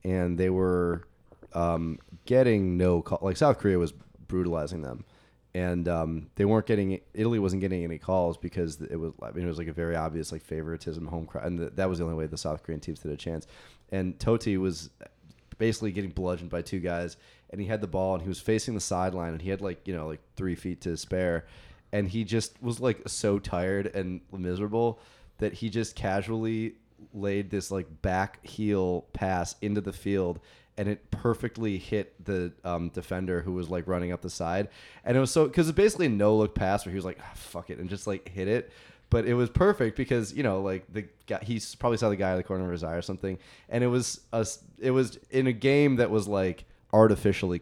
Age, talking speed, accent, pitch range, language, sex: 30-49, 225 wpm, American, 85-110 Hz, English, male